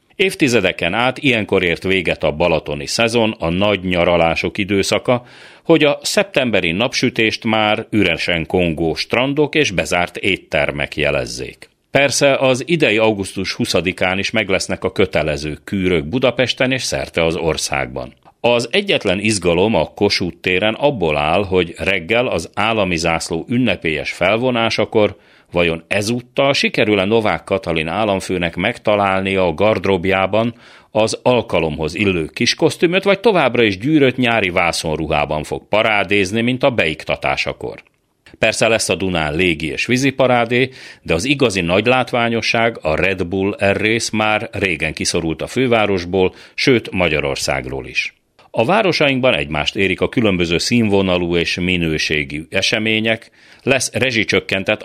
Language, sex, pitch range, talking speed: Hungarian, male, 90-120 Hz, 125 wpm